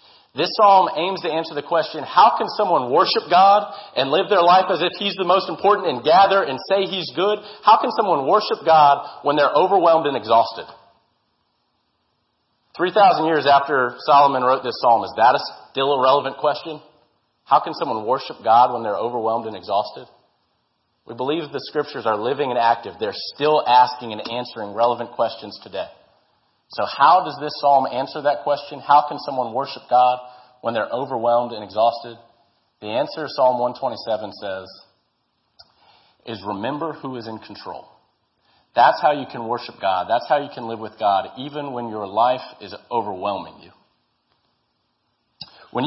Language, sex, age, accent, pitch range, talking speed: English, male, 40-59, American, 120-160 Hz, 165 wpm